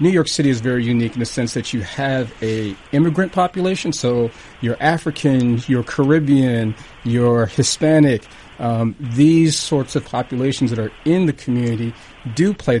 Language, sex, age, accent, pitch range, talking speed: English, male, 40-59, American, 120-145 Hz, 160 wpm